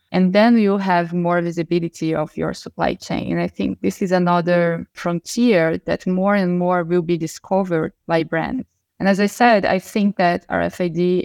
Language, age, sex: English, 20-39, female